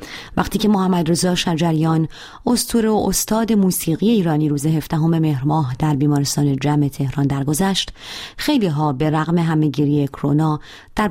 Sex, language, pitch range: female, Persian, 150-200 Hz